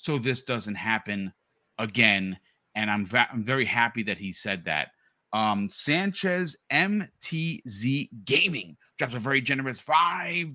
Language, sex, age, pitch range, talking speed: English, male, 30-49, 115-145 Hz, 135 wpm